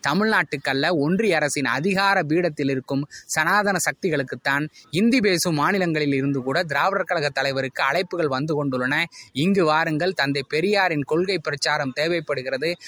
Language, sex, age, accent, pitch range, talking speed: Tamil, male, 20-39, native, 140-180 Hz, 120 wpm